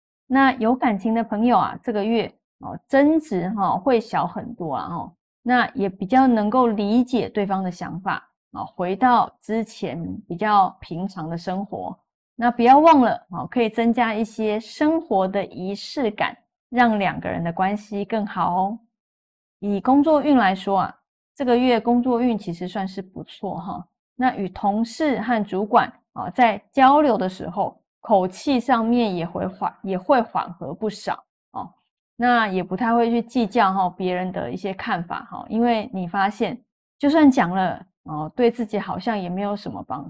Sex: female